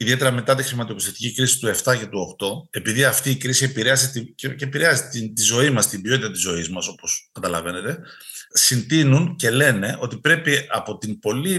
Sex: male